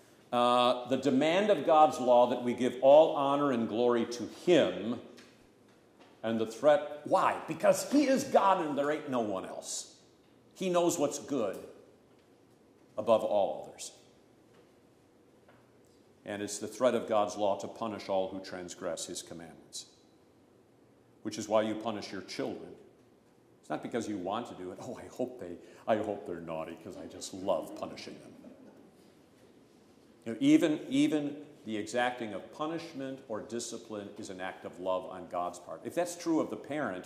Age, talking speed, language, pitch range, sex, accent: 50-69, 160 wpm, English, 105-150 Hz, male, American